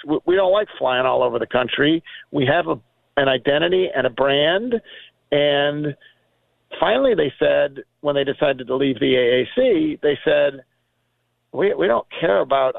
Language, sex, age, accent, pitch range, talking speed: English, male, 50-69, American, 135-195 Hz, 160 wpm